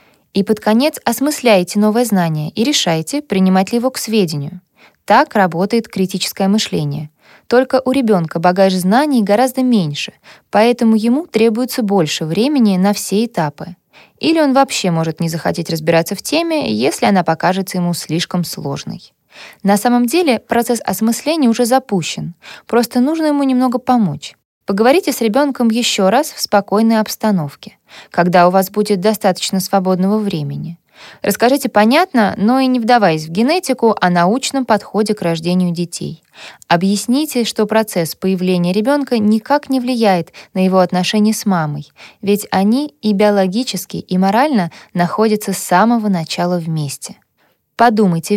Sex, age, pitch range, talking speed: female, 20-39, 180-240 Hz, 140 wpm